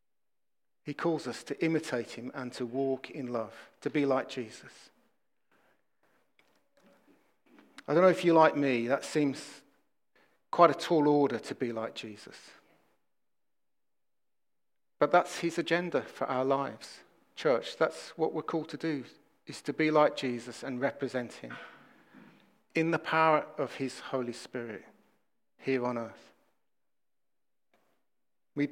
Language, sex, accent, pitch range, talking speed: English, male, British, 130-170 Hz, 135 wpm